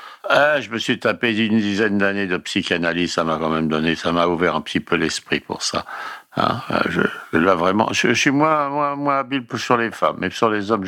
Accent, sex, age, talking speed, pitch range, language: French, male, 60-79, 235 wpm, 95-130 Hz, French